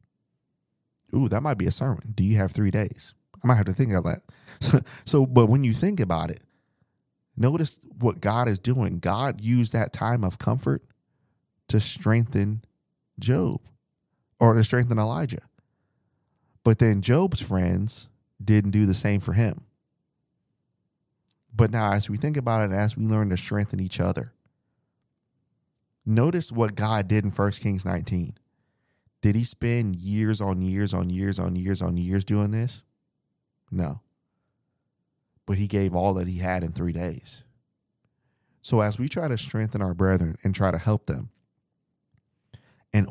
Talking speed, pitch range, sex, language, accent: 160 wpm, 100-125 Hz, male, English, American